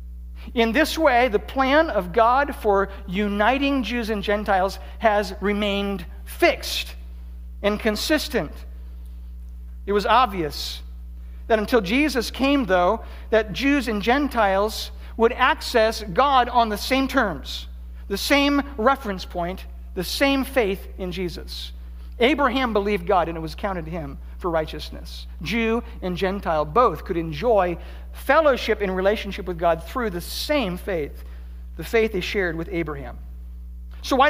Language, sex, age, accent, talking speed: English, male, 60-79, American, 140 wpm